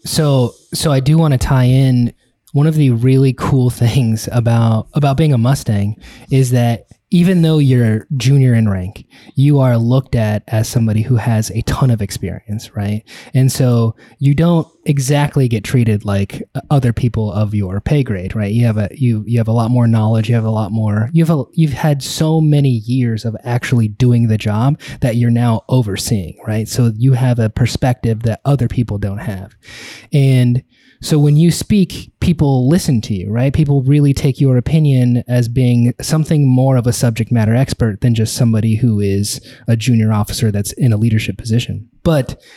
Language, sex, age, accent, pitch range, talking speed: English, male, 20-39, American, 115-140 Hz, 190 wpm